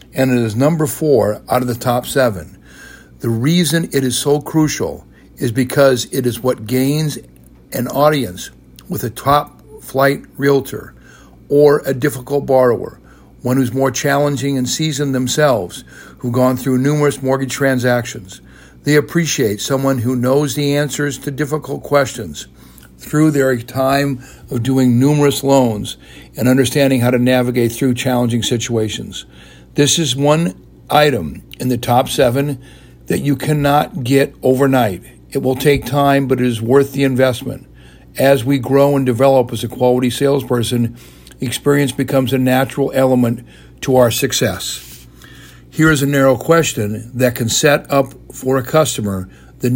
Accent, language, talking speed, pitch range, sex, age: American, English, 150 wpm, 120-140 Hz, male, 60-79